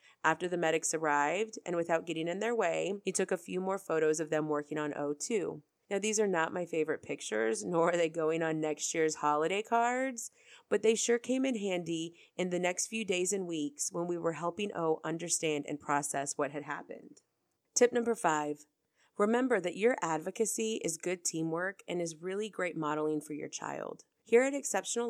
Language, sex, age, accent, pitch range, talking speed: English, female, 30-49, American, 155-210 Hz, 195 wpm